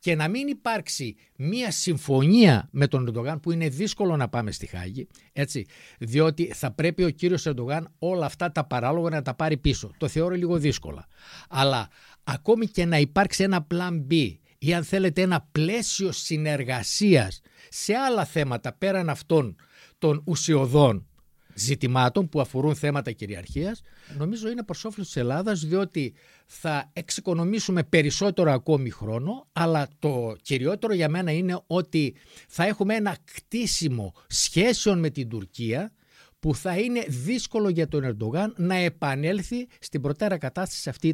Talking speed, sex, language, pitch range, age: 145 wpm, male, Greek, 135-185 Hz, 60-79